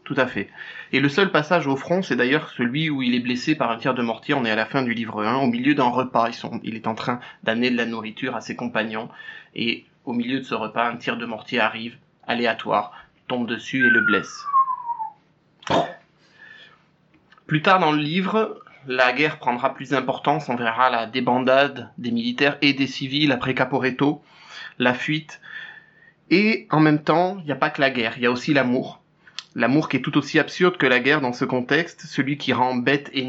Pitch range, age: 120-155 Hz, 30-49